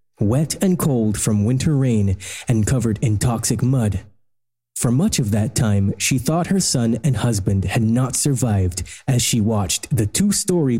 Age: 20-39